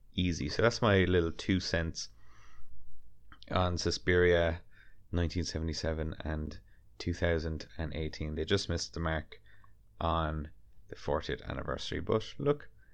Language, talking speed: English, 105 wpm